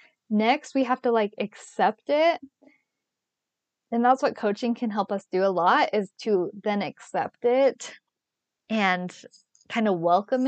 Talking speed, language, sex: 150 wpm, English, female